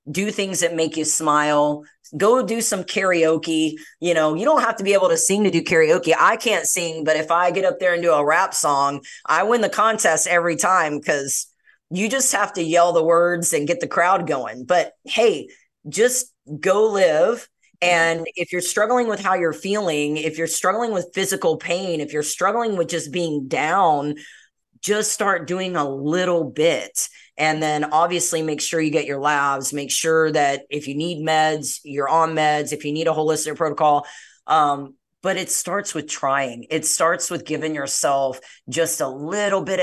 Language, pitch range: English, 150-185 Hz